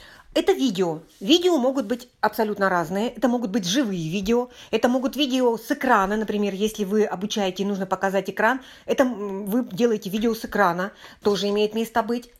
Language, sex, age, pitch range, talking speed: Russian, female, 40-59, 190-245 Hz, 170 wpm